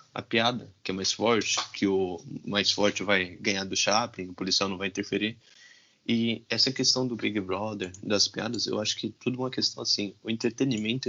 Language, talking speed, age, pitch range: Portuguese, 195 wpm, 20-39, 100-125 Hz